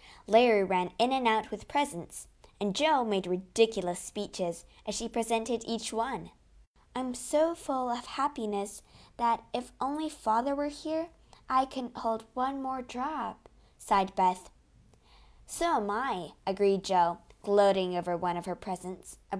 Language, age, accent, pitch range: Chinese, 20-39, American, 185-260 Hz